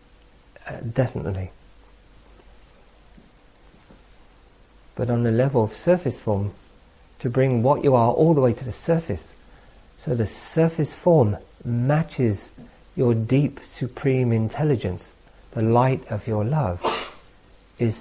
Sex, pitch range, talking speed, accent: male, 95-125 Hz, 115 wpm, British